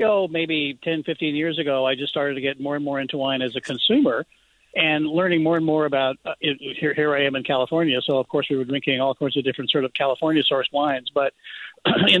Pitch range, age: 135-165 Hz, 50-69